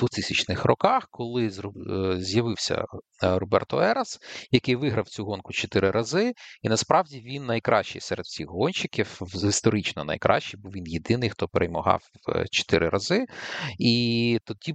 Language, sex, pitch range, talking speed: Ukrainian, male, 95-130 Hz, 120 wpm